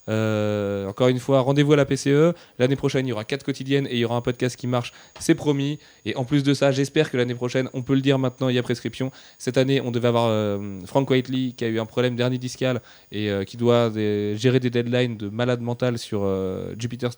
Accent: French